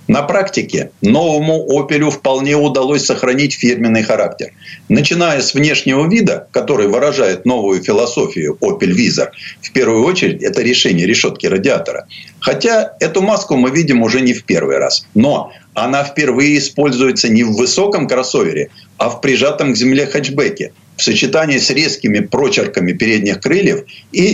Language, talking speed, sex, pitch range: Russian, 145 wpm, male, 115-160 Hz